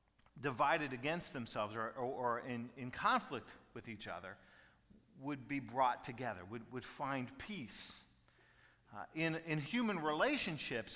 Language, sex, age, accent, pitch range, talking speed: English, male, 40-59, American, 145-200 Hz, 135 wpm